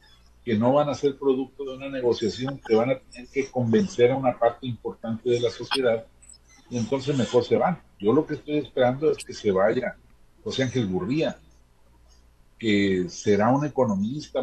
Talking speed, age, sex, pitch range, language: 180 wpm, 50-69, male, 100-135 Hz, Spanish